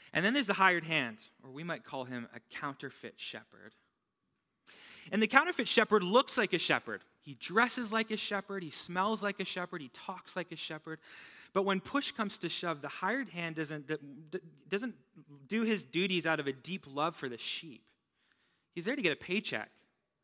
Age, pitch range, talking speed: 20-39, 145-200 Hz, 195 wpm